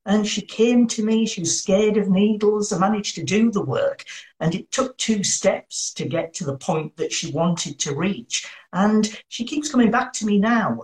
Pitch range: 165-220 Hz